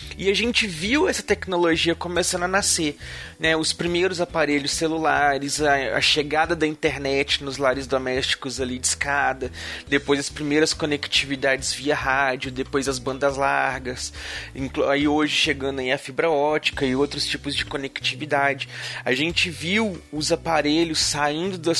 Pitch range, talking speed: 140-160 Hz, 145 wpm